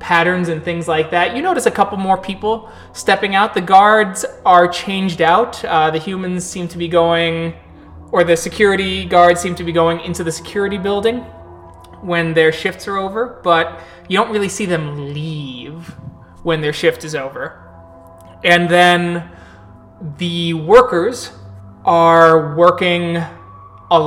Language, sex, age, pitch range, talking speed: English, male, 20-39, 155-175 Hz, 150 wpm